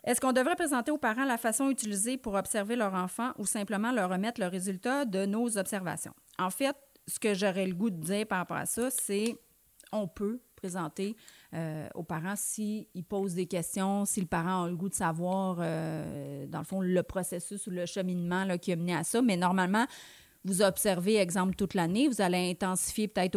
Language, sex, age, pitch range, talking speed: French, female, 30-49, 175-205 Hz, 205 wpm